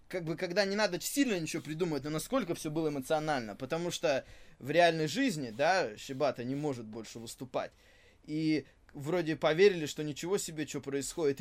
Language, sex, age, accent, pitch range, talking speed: Russian, male, 20-39, native, 135-170 Hz, 170 wpm